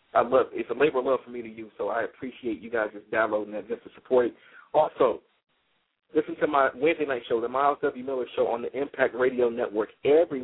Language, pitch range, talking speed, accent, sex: English, 120-165 Hz, 235 wpm, American, male